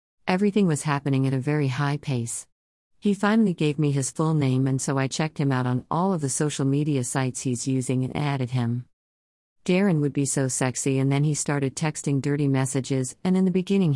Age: 50-69